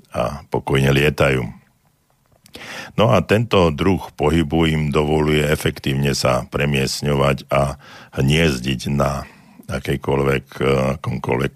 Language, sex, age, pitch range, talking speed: Slovak, male, 60-79, 65-75 Hz, 90 wpm